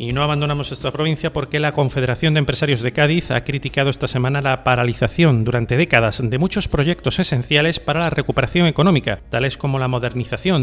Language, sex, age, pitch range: Spanish, male, 30-49, 125-155 Hz